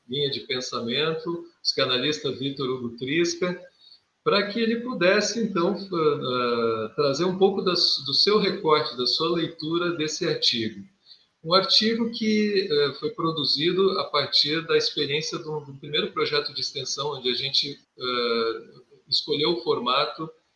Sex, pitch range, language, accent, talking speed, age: male, 125-170 Hz, Portuguese, Brazilian, 135 wpm, 40-59